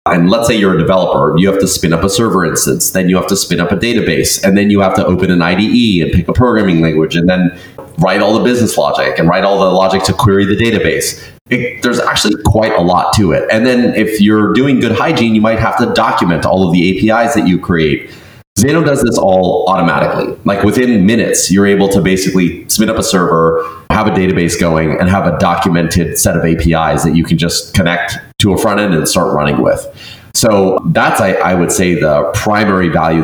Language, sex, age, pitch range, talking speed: English, male, 30-49, 85-110 Hz, 225 wpm